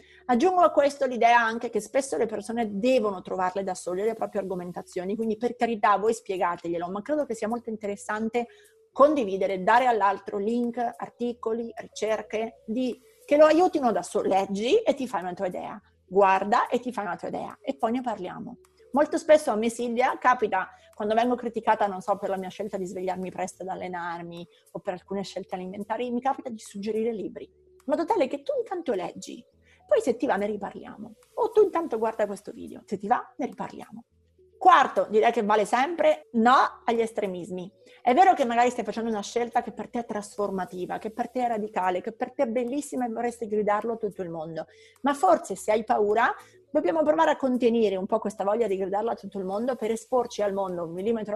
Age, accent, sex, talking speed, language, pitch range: 30-49, native, female, 205 wpm, Italian, 200-255 Hz